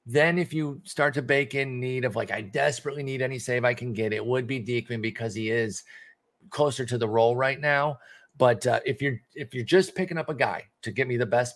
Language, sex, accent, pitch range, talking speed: English, male, American, 115-140 Hz, 240 wpm